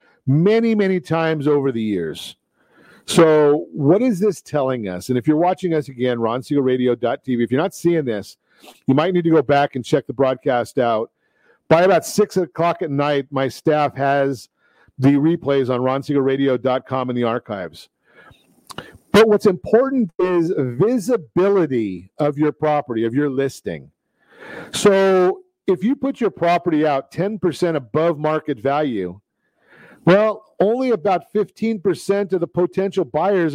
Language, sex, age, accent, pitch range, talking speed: English, male, 50-69, American, 140-195 Hz, 145 wpm